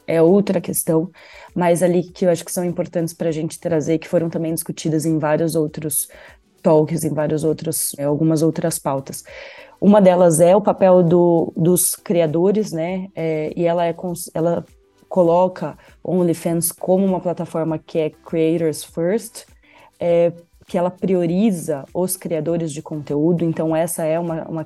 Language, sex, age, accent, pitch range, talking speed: Portuguese, female, 20-39, Brazilian, 155-175 Hz, 150 wpm